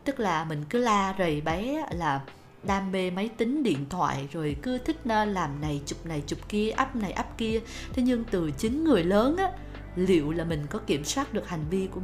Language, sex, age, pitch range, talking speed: Vietnamese, female, 20-39, 170-230 Hz, 225 wpm